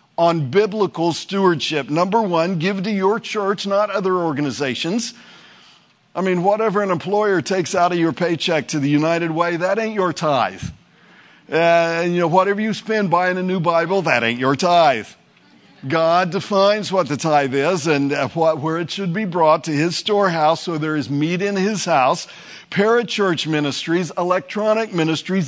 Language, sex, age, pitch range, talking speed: English, male, 50-69, 155-195 Hz, 170 wpm